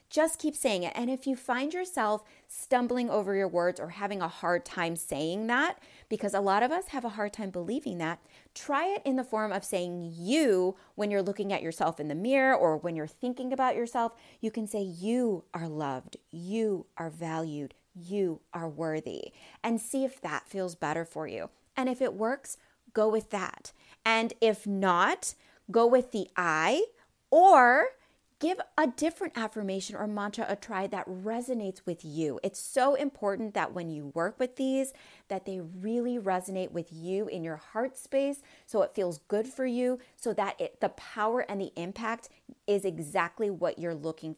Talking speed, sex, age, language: 185 wpm, female, 30-49, English